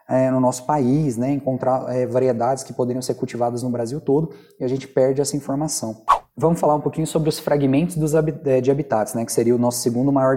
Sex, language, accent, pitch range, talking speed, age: male, Portuguese, Brazilian, 115-140 Hz, 225 wpm, 20-39